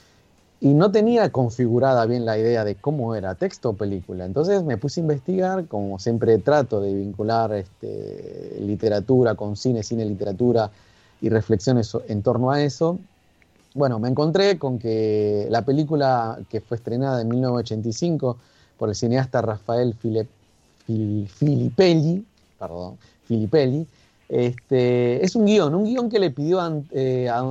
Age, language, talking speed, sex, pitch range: 30-49, Spanish, 135 wpm, male, 110-145 Hz